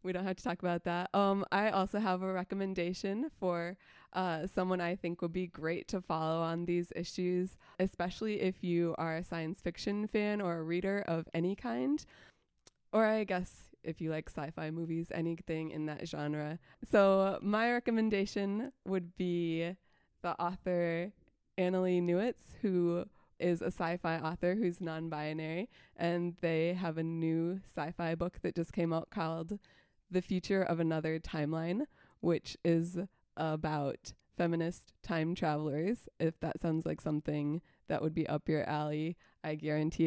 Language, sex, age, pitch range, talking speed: English, female, 20-39, 160-185 Hz, 155 wpm